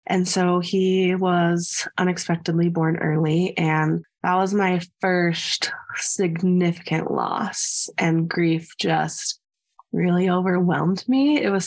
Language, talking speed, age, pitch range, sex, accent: English, 115 wpm, 20-39, 175-200 Hz, female, American